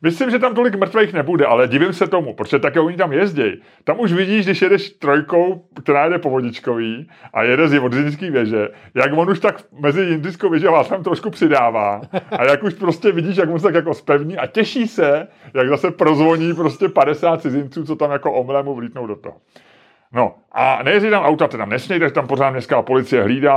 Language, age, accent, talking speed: Czech, 30-49, native, 200 wpm